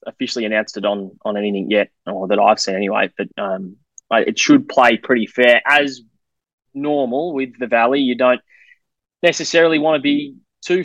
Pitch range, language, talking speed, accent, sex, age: 120-145 Hz, English, 170 wpm, Australian, male, 20-39